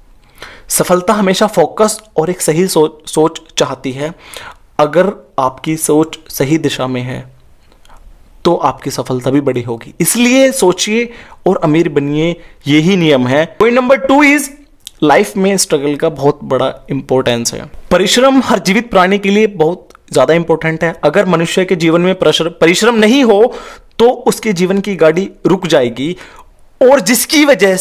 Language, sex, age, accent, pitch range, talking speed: Hindi, male, 30-49, native, 160-235 Hz, 155 wpm